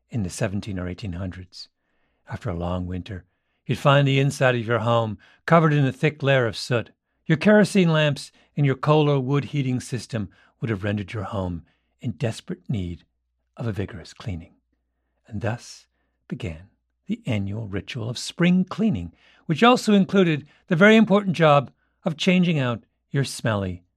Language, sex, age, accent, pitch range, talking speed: English, male, 50-69, American, 100-165 Hz, 165 wpm